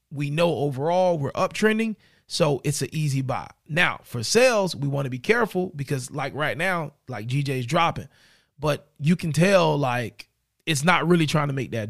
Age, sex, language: 20-39, male, English